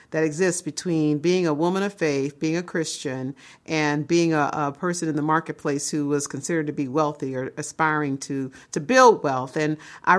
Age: 40-59